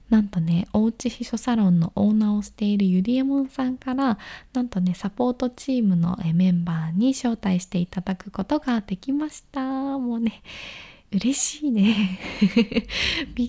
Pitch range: 180-250 Hz